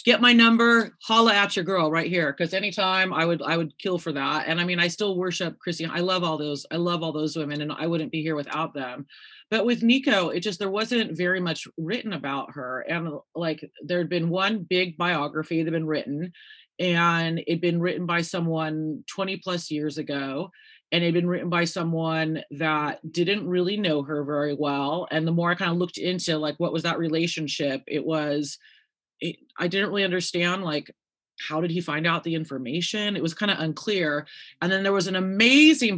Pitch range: 155-180 Hz